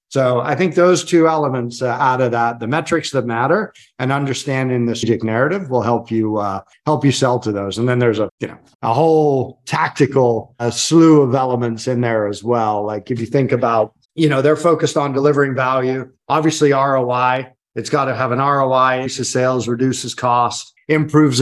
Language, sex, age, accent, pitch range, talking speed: English, male, 40-59, American, 120-145 Hz, 190 wpm